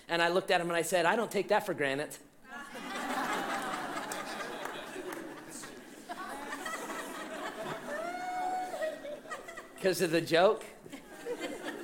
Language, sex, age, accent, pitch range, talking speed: English, male, 30-49, American, 165-220 Hz, 90 wpm